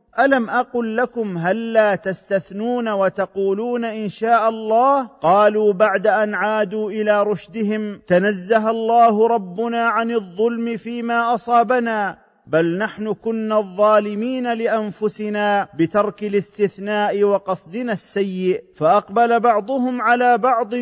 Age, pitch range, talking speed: 40-59, 205-235 Hz, 105 wpm